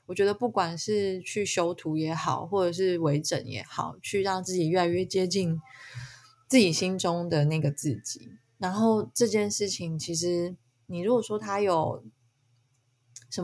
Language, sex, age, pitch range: Chinese, female, 20-39, 135-190 Hz